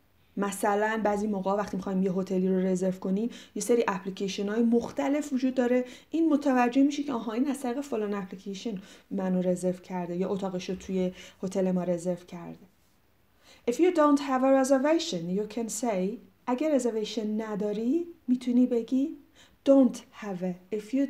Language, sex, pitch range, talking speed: Persian, female, 195-275 Hz, 160 wpm